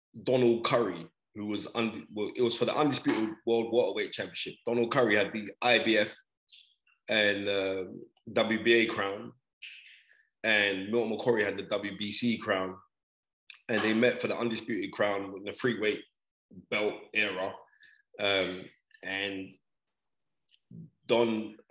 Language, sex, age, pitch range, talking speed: English, male, 20-39, 105-160 Hz, 125 wpm